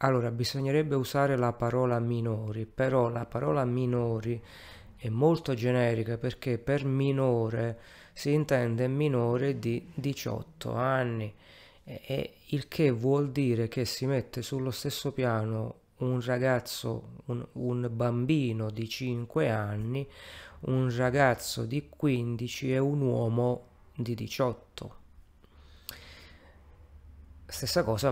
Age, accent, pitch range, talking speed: 30-49, native, 110-130 Hz, 115 wpm